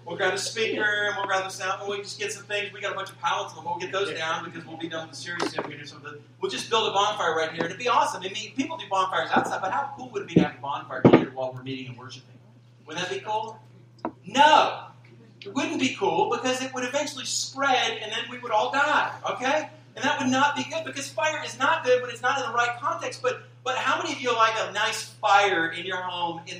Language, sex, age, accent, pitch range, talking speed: English, male, 40-59, American, 125-215 Hz, 280 wpm